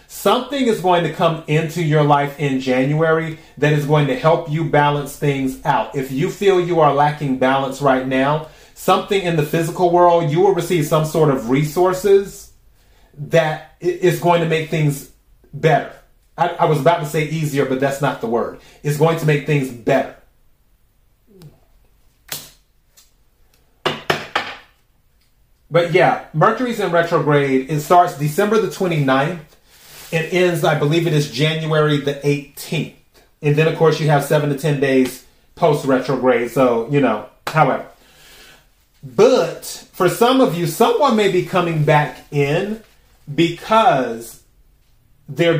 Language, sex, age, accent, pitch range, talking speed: English, male, 30-49, American, 145-175 Hz, 150 wpm